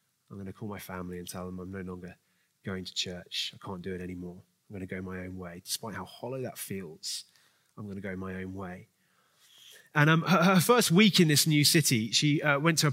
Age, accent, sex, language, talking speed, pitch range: 30-49, British, male, English, 250 wpm, 100-145 Hz